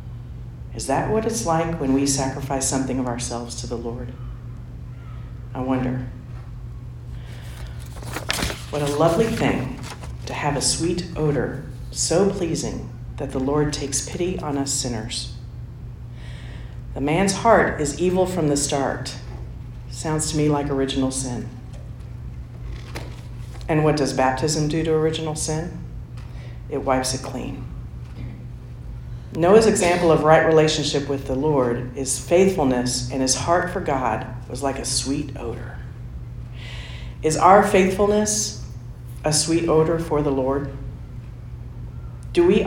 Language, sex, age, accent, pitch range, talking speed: English, female, 50-69, American, 120-155 Hz, 130 wpm